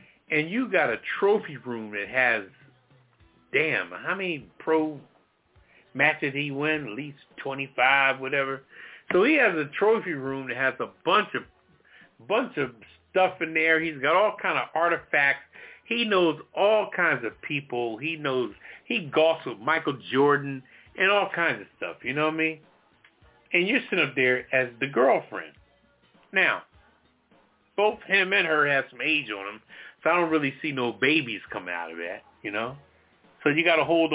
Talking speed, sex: 175 wpm, male